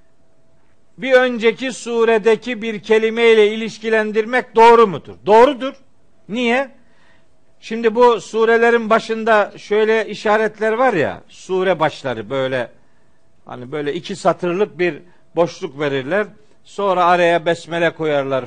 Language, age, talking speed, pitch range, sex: Turkish, 60-79, 105 wpm, 180-230 Hz, male